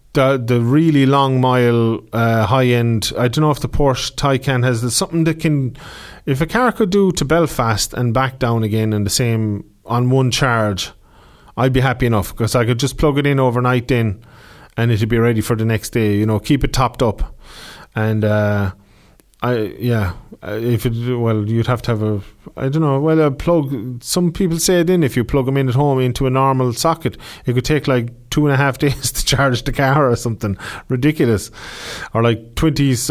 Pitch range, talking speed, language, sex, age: 110-130 Hz, 210 wpm, English, male, 30-49